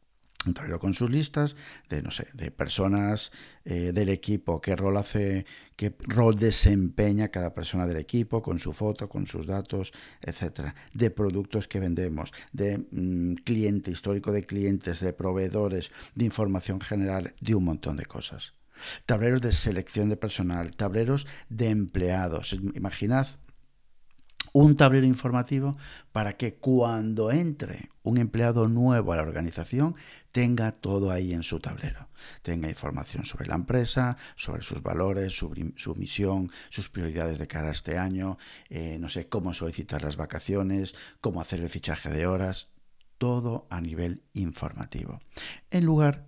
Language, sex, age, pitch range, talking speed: Spanish, male, 50-69, 90-115 Hz, 150 wpm